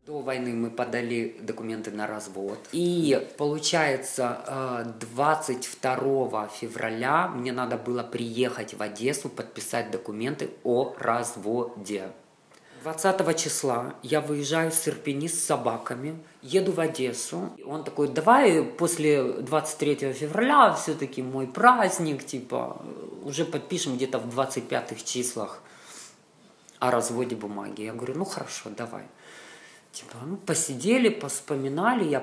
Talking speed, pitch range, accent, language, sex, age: 115 wpm, 120-150 Hz, native, Russian, female, 20-39